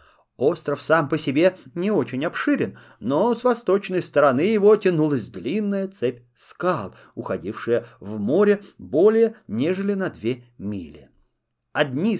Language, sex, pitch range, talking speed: Russian, male, 130-200 Hz, 125 wpm